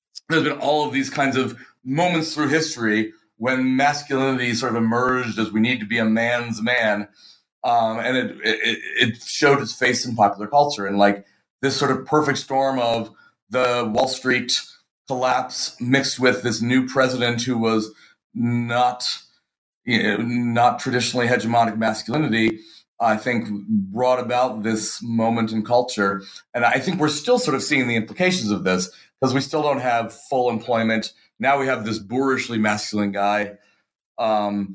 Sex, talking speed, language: male, 155 wpm, English